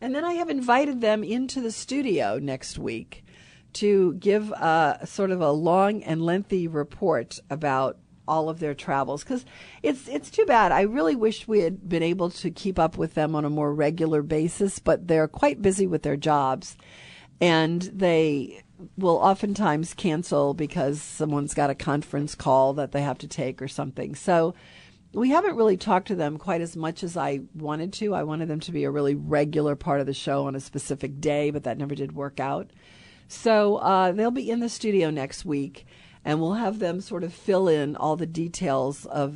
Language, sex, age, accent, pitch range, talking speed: English, female, 50-69, American, 145-190 Hz, 200 wpm